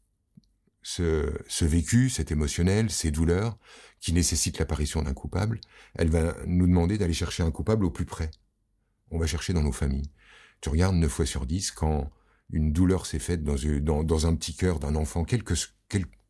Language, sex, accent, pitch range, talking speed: French, male, French, 75-90 Hz, 190 wpm